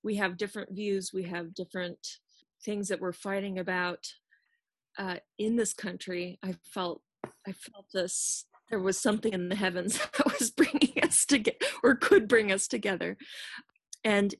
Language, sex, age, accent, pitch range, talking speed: English, female, 30-49, American, 185-225 Hz, 160 wpm